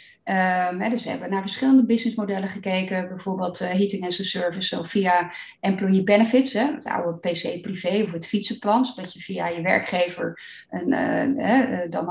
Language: Dutch